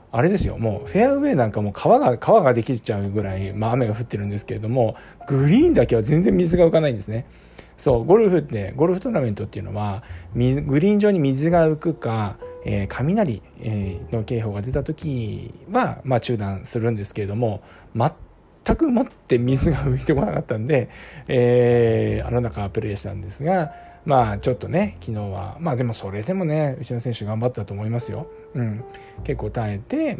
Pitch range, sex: 105-140 Hz, male